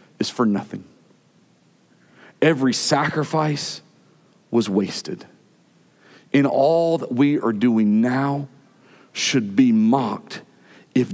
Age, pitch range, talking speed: 40-59, 110-150 Hz, 95 wpm